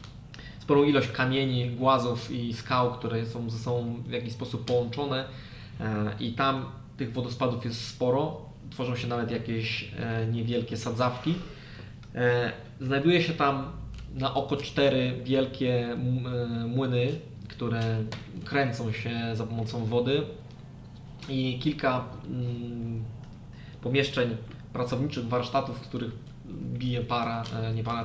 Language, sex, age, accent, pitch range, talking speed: Polish, male, 20-39, native, 115-135 Hz, 110 wpm